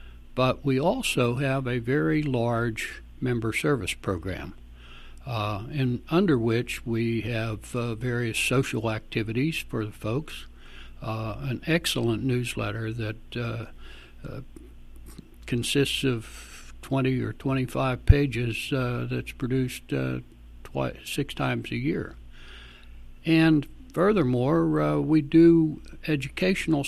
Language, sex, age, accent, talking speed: English, male, 60-79, American, 115 wpm